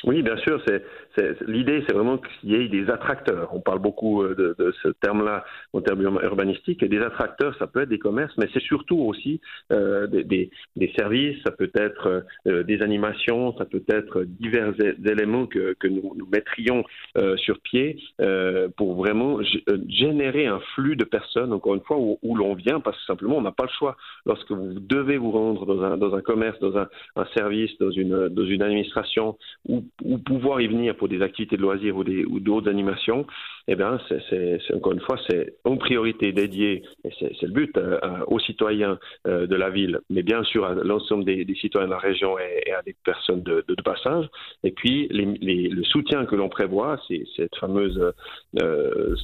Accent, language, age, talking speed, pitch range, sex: French, French, 50-69, 215 wpm, 100-145 Hz, male